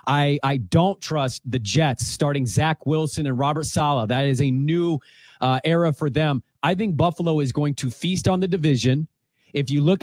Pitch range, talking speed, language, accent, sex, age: 135-160 Hz, 195 wpm, English, American, male, 30-49